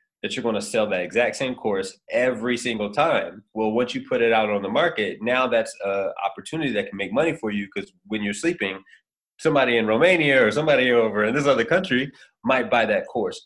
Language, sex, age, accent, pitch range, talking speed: Romanian, male, 20-39, American, 105-145 Hz, 220 wpm